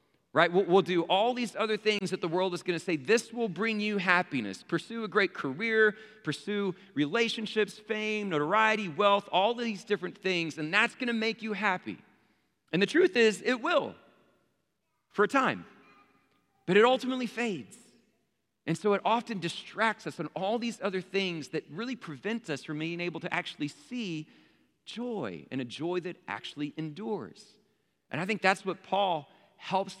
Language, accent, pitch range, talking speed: English, American, 140-210 Hz, 175 wpm